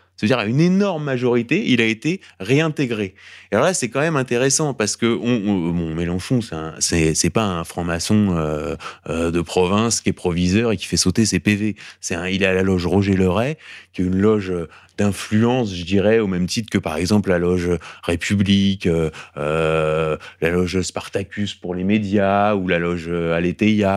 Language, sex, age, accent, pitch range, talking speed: French, male, 20-39, French, 90-120 Hz, 200 wpm